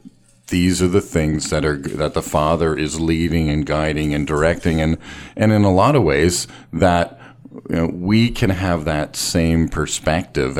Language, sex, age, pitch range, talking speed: English, male, 50-69, 75-90 Hz, 175 wpm